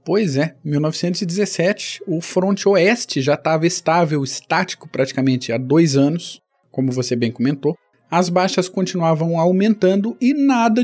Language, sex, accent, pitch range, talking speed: Portuguese, male, Brazilian, 170-220 Hz, 135 wpm